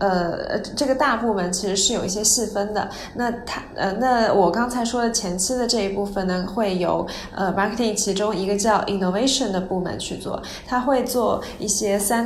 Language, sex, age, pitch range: Chinese, female, 20-39, 190-225 Hz